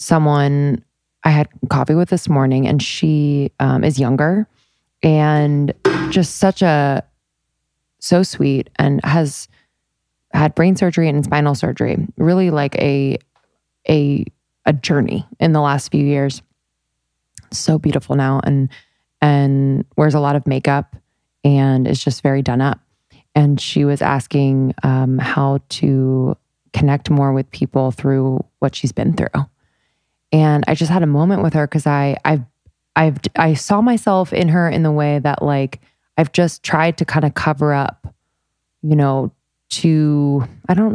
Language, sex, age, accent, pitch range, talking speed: English, female, 20-39, American, 135-155 Hz, 150 wpm